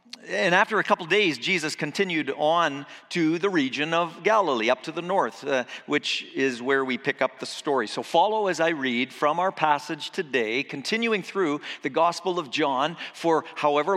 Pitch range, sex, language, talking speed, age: 130-175 Hz, male, English, 185 wpm, 50-69